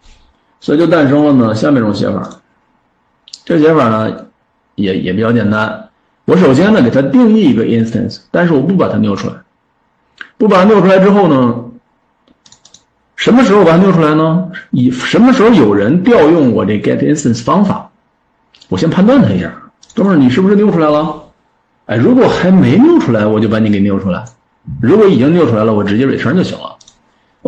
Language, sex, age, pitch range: Chinese, male, 50-69, 110-170 Hz